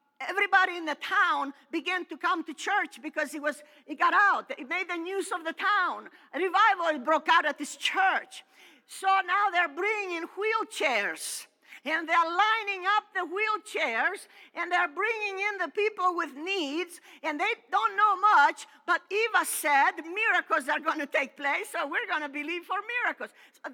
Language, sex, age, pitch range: English, female, 50-69, 310-400 Hz